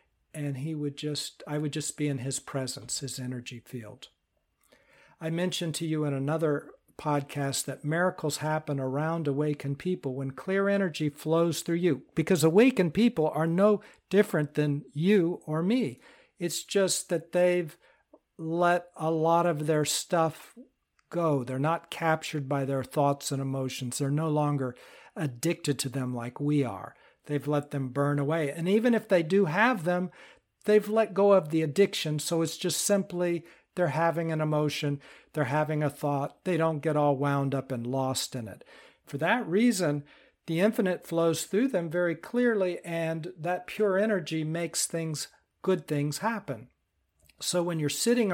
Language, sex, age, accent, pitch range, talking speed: English, male, 60-79, American, 145-180 Hz, 165 wpm